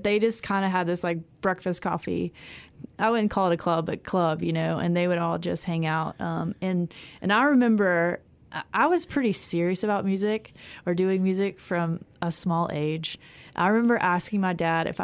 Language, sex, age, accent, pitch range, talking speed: English, female, 20-39, American, 170-200 Hz, 200 wpm